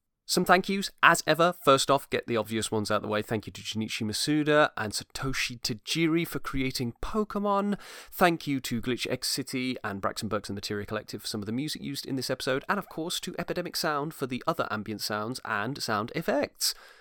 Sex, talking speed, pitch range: male, 215 wpm, 110-170 Hz